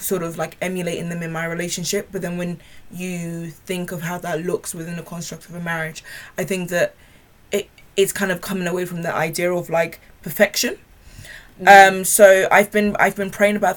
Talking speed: 200 wpm